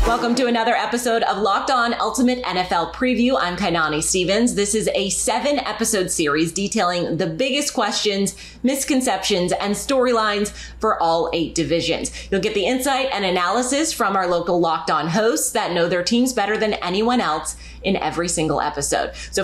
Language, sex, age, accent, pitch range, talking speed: English, female, 20-39, American, 185-245 Hz, 170 wpm